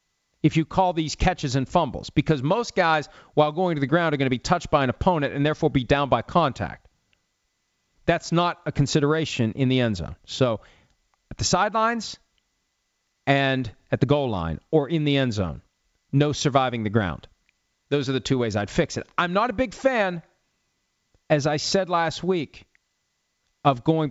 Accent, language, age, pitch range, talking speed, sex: American, English, 40-59, 110-150 Hz, 185 wpm, male